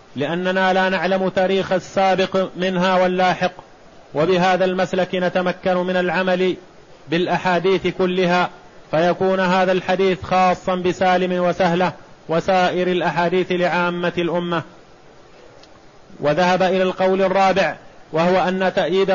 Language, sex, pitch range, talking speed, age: Arabic, male, 180-190 Hz, 95 wpm, 30-49